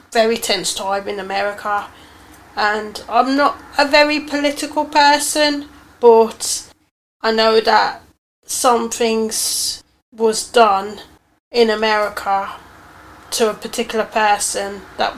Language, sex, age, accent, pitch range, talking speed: English, female, 30-49, British, 210-240 Hz, 105 wpm